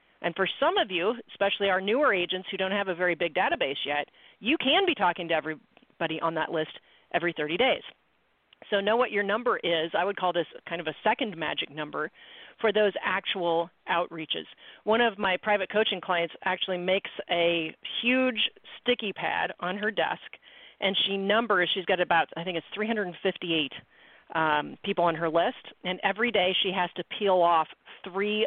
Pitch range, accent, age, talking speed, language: 170-215 Hz, American, 40-59, 185 wpm, English